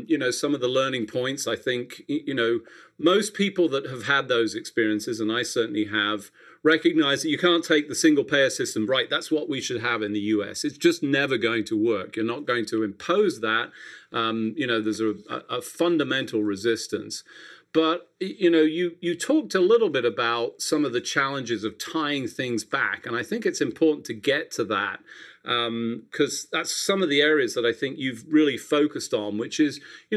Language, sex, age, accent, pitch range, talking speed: English, male, 40-59, British, 115-175 Hz, 210 wpm